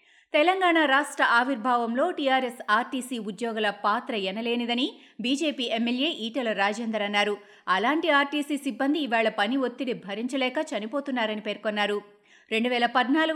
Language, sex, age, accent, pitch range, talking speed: Telugu, female, 20-39, native, 215-275 Hz, 110 wpm